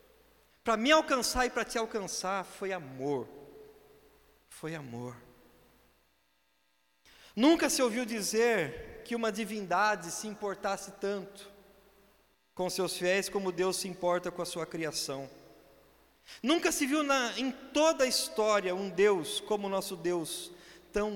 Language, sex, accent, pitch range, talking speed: Portuguese, male, Brazilian, 180-255 Hz, 130 wpm